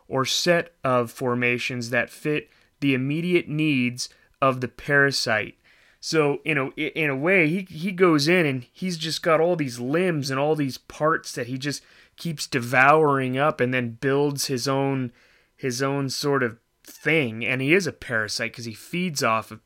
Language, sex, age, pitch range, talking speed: English, male, 30-49, 125-150 Hz, 180 wpm